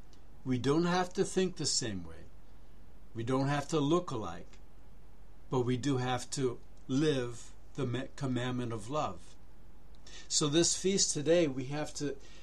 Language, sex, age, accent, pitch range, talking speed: English, male, 60-79, American, 115-150 Hz, 150 wpm